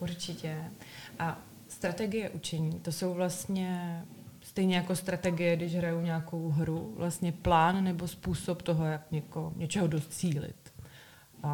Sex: female